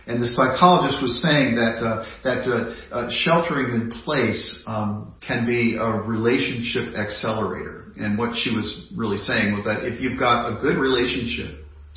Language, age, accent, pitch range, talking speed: English, 50-69, American, 100-120 Hz, 165 wpm